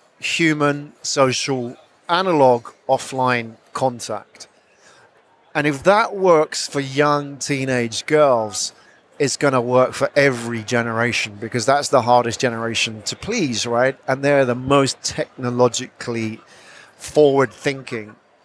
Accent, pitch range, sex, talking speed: British, 120-145 Hz, male, 110 wpm